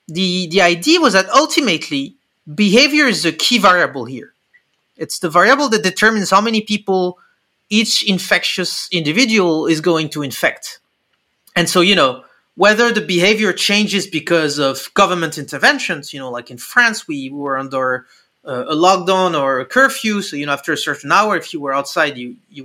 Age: 30-49